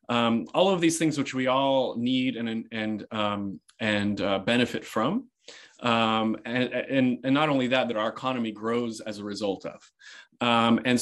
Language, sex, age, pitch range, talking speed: English, male, 30-49, 110-140 Hz, 185 wpm